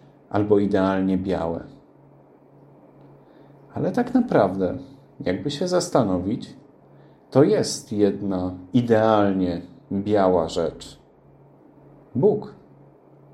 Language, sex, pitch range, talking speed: Polish, male, 120-155 Hz, 70 wpm